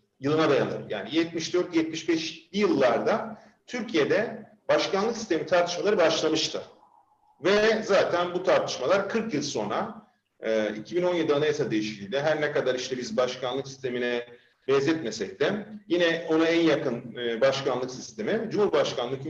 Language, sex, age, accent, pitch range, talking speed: Turkish, male, 40-59, native, 140-210 Hz, 110 wpm